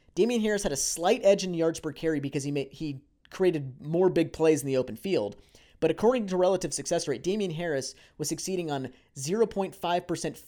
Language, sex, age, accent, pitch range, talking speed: English, male, 30-49, American, 150-190 Hz, 195 wpm